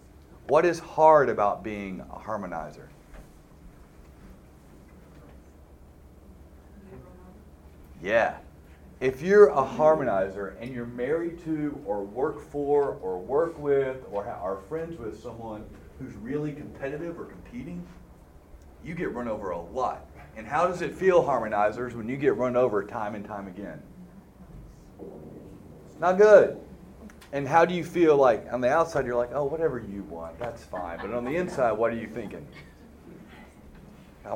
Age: 40-59